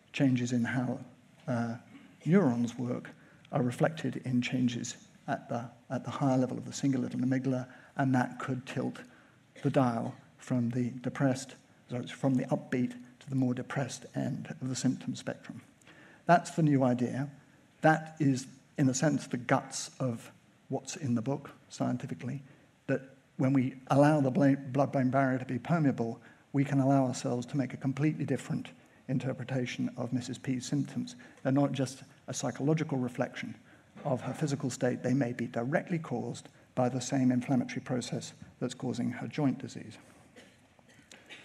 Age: 50-69